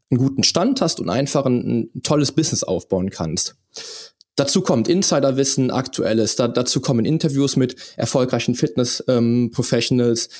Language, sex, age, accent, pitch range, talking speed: German, male, 20-39, German, 115-135 Hz, 135 wpm